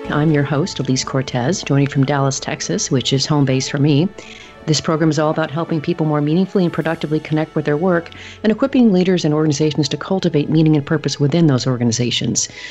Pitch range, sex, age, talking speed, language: 140-165 Hz, female, 40-59, 205 wpm, English